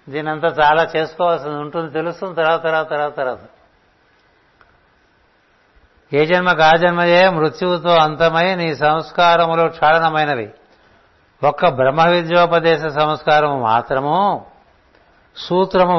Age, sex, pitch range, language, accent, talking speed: 60-79, male, 140-165 Hz, Telugu, native, 85 wpm